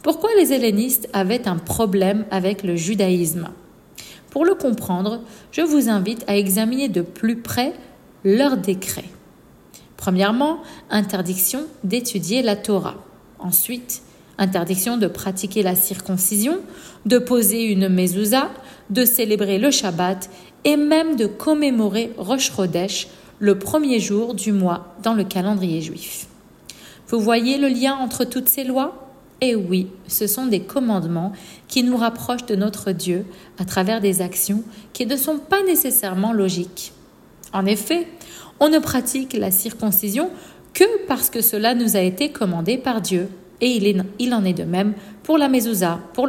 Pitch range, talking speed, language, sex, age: 190-260 Hz, 150 wpm, French, female, 50-69